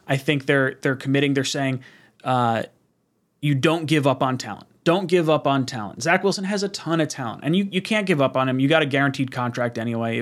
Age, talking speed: 30-49, 240 wpm